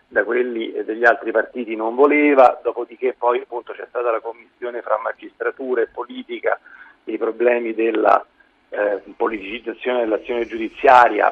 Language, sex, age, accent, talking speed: Italian, male, 40-59, native, 140 wpm